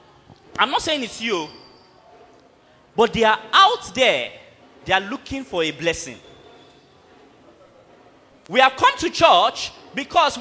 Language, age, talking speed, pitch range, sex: English, 30-49, 125 wpm, 250-350 Hz, male